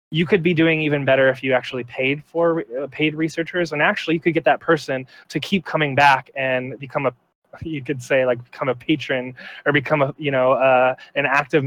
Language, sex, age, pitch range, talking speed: English, male, 20-39, 130-150 Hz, 220 wpm